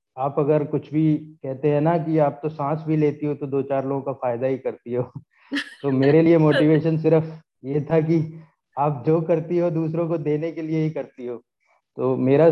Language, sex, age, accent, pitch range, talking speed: Hindi, male, 30-49, native, 140-170 Hz, 215 wpm